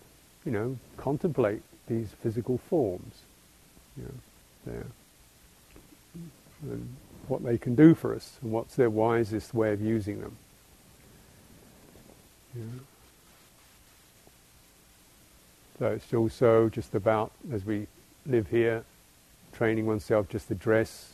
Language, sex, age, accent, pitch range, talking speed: English, male, 50-69, British, 100-120 Hz, 105 wpm